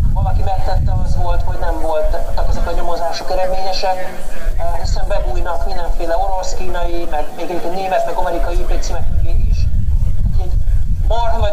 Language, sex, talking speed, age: Hungarian, male, 140 wpm, 40-59